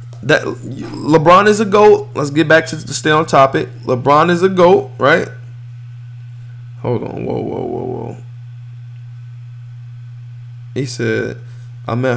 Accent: American